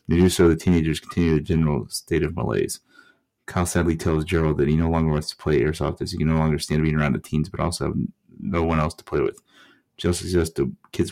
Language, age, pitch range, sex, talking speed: English, 30-49, 75-85 Hz, male, 250 wpm